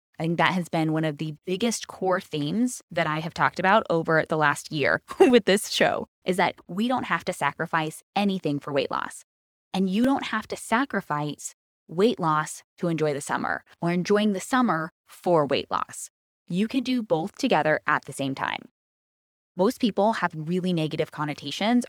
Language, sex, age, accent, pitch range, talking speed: English, female, 10-29, American, 155-205 Hz, 185 wpm